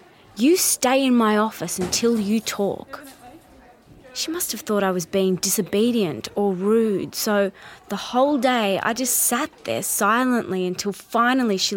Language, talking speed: English, 155 wpm